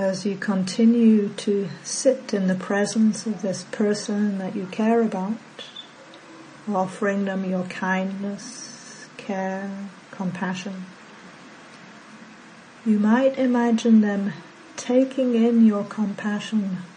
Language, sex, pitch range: English, female, 190-225 Hz